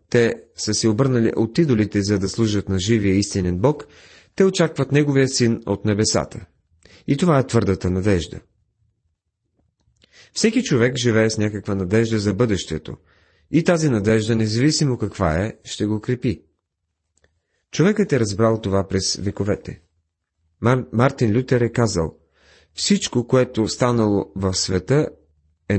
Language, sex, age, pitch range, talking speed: Bulgarian, male, 30-49, 95-125 Hz, 135 wpm